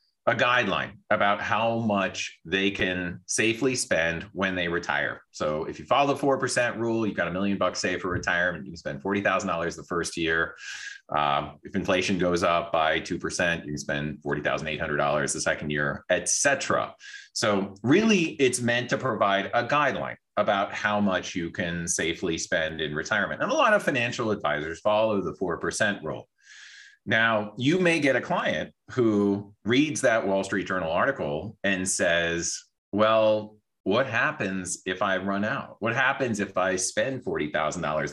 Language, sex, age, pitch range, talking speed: English, male, 30-49, 90-110 Hz, 165 wpm